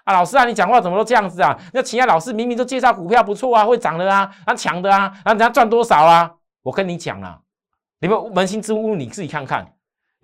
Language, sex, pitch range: Chinese, male, 145-235 Hz